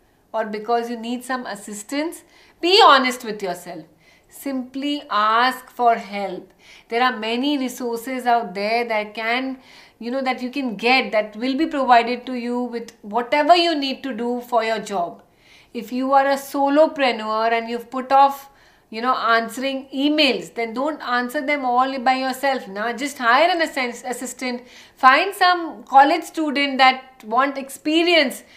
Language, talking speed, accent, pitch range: English, 160 wpm, Indian, 230-290 Hz